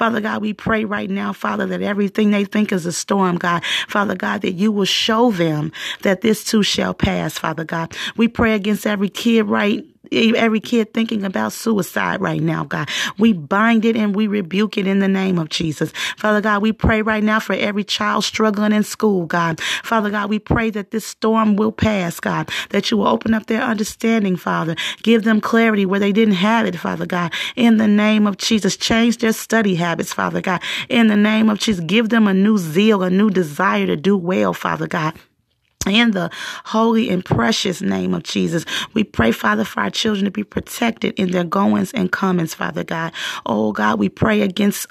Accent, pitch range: American, 185-220 Hz